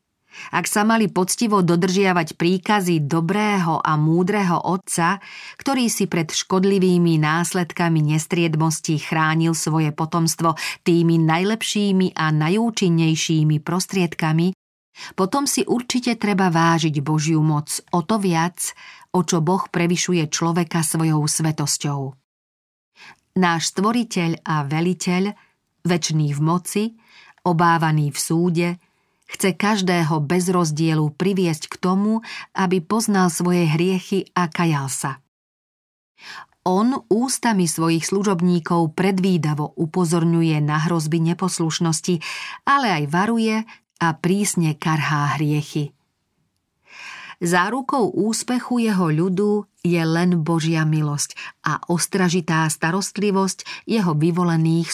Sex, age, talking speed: female, 40-59, 105 wpm